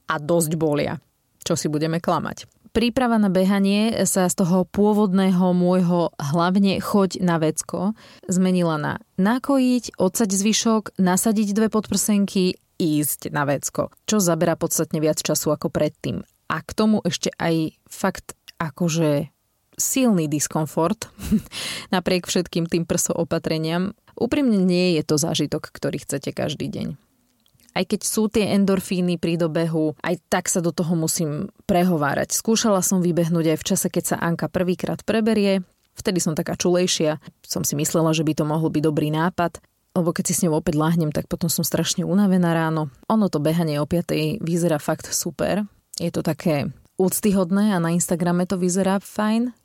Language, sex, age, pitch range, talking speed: Slovak, female, 20-39, 165-195 Hz, 155 wpm